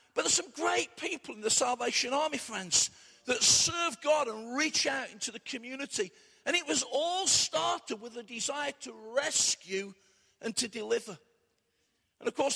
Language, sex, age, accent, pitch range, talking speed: English, male, 50-69, British, 230-300 Hz, 165 wpm